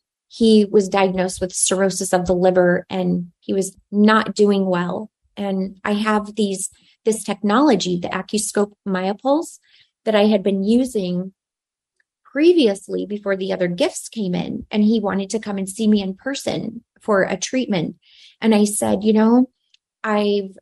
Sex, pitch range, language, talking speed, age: female, 195-225 Hz, English, 155 wpm, 30-49